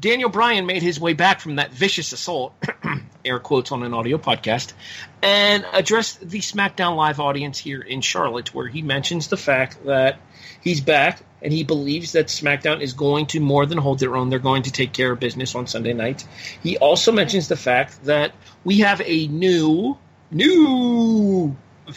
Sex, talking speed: male, 185 wpm